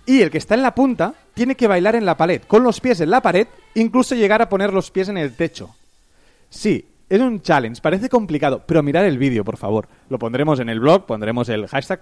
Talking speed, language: 240 wpm, Spanish